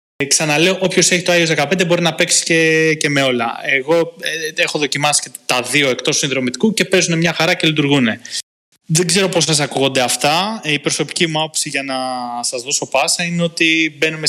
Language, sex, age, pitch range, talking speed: Greek, male, 20-39, 125-165 Hz, 190 wpm